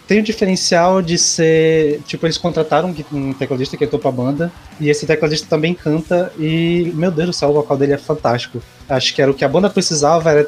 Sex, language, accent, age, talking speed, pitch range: male, Portuguese, Brazilian, 20-39, 230 wpm, 140-165 Hz